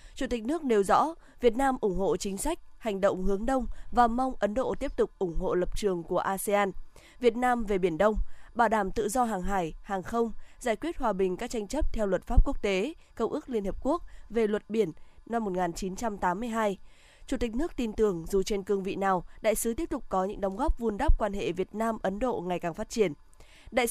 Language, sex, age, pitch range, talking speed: Vietnamese, female, 20-39, 195-245 Hz, 230 wpm